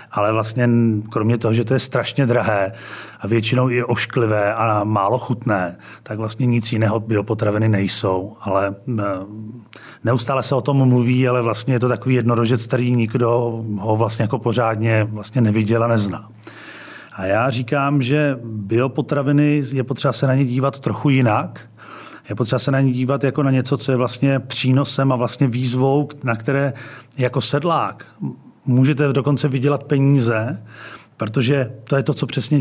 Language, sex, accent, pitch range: Czech, male, native, 115-135 Hz